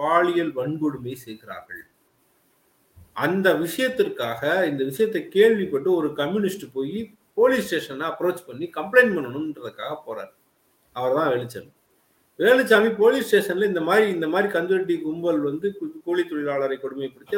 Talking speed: 105 wpm